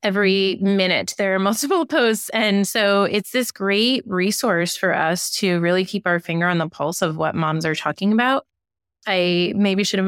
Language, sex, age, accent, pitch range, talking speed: English, female, 20-39, American, 175-215 Hz, 190 wpm